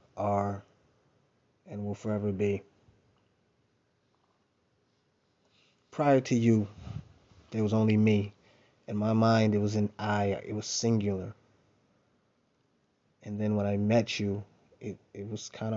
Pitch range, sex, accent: 100-110 Hz, male, American